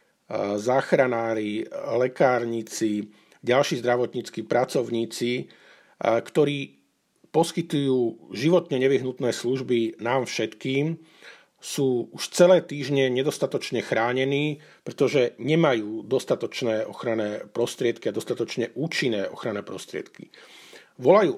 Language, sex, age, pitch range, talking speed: Slovak, male, 50-69, 110-140 Hz, 80 wpm